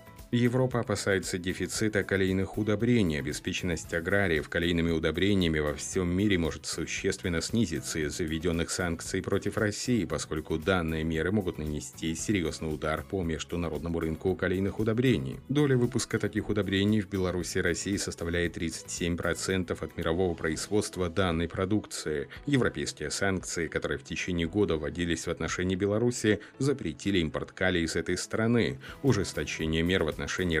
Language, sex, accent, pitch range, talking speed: Russian, male, native, 80-100 Hz, 130 wpm